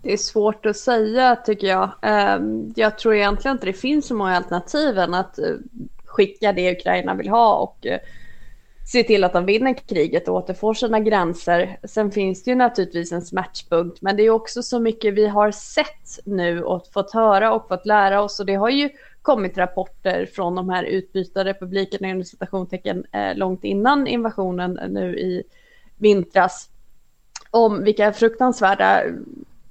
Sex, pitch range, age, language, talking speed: female, 190-225 Hz, 20-39, Swedish, 160 wpm